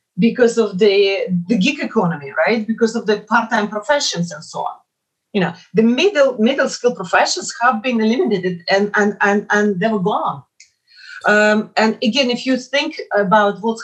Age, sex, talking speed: 40-59, female, 175 wpm